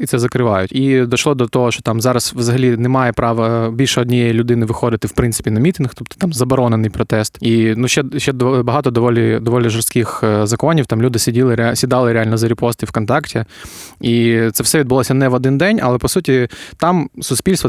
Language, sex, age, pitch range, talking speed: Ukrainian, male, 20-39, 115-130 Hz, 185 wpm